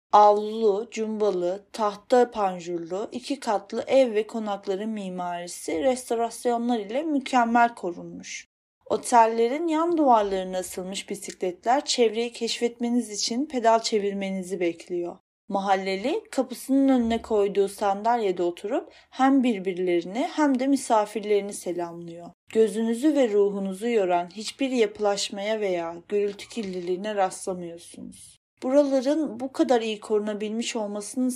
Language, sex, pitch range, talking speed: Turkish, female, 190-245 Hz, 100 wpm